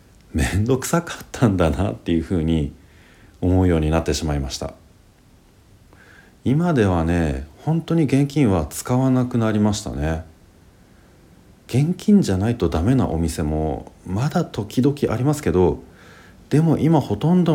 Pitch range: 85-120 Hz